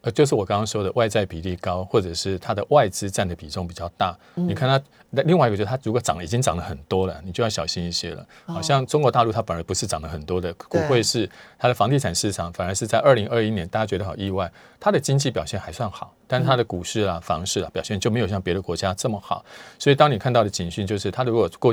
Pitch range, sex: 90-125 Hz, male